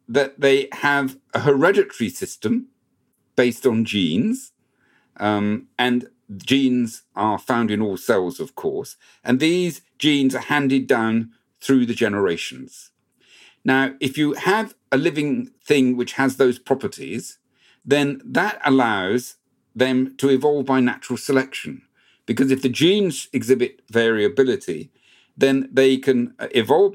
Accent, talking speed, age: British, 130 wpm, 50-69